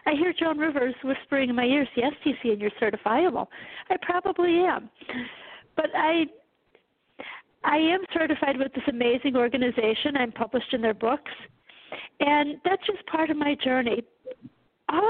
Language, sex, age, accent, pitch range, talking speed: English, female, 50-69, American, 240-320 Hz, 155 wpm